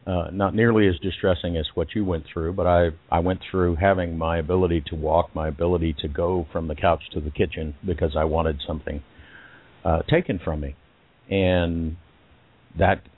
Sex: male